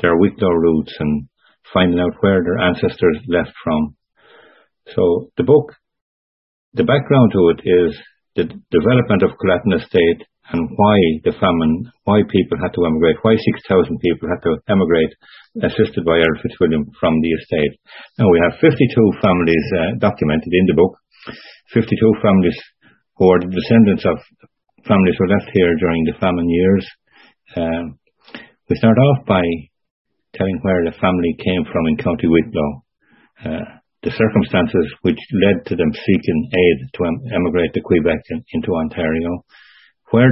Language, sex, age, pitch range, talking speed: English, male, 50-69, 80-100 Hz, 150 wpm